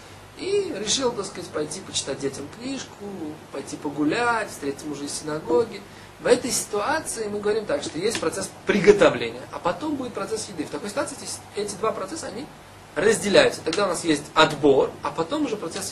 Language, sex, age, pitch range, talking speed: Russian, male, 20-39, 150-225 Hz, 175 wpm